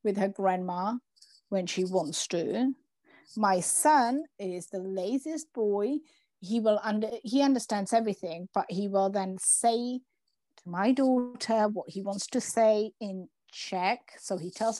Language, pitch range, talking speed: Czech, 190-230 Hz, 150 wpm